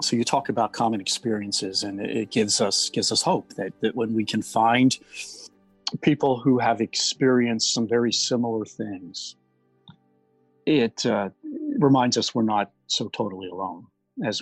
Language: English